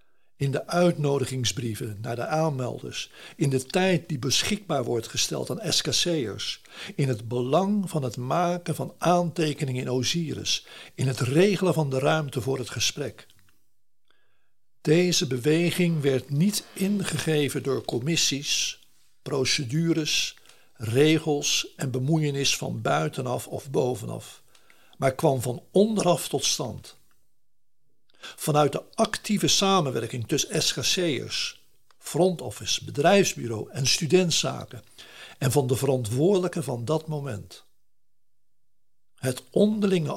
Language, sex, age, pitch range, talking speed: Dutch, male, 60-79, 130-170 Hz, 110 wpm